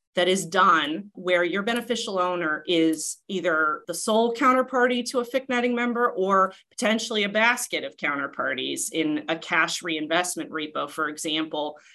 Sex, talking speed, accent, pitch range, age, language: female, 145 wpm, American, 160-210 Hz, 30-49, English